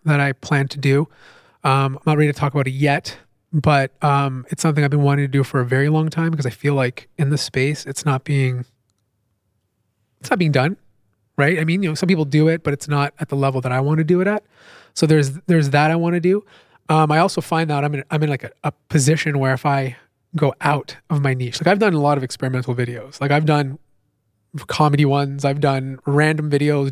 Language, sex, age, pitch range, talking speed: English, male, 20-39, 135-165 Hz, 245 wpm